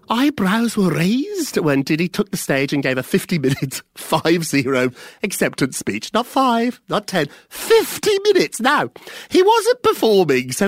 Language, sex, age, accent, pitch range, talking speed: English, male, 40-59, British, 130-215 Hz, 150 wpm